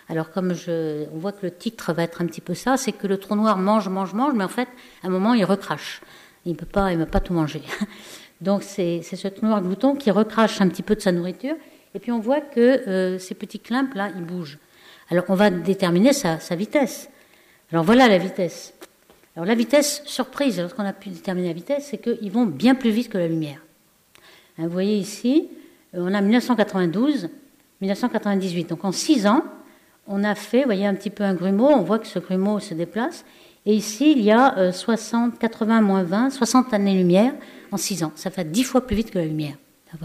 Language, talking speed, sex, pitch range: French, 215 wpm, female, 180-235 Hz